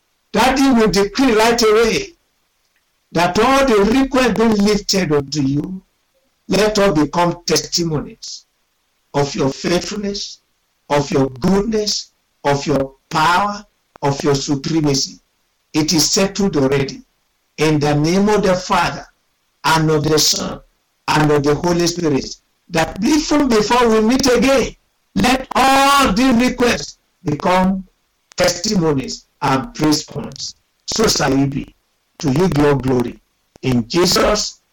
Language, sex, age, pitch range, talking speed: English, male, 60-79, 140-210 Hz, 125 wpm